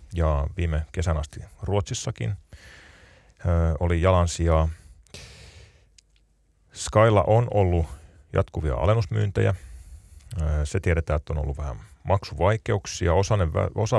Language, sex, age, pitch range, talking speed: Finnish, male, 30-49, 75-100 Hz, 100 wpm